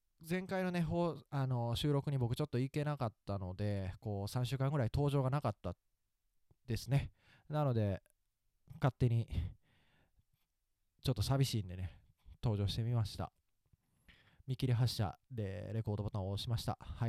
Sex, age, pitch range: male, 20-39, 105-140 Hz